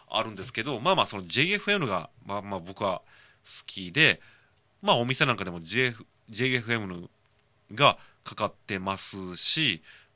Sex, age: male, 30-49